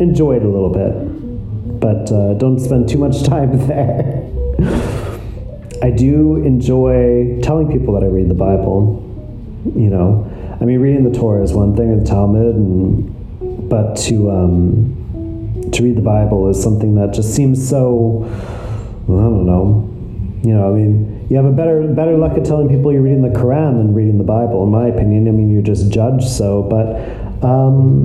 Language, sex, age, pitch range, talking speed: English, male, 30-49, 100-125 Hz, 185 wpm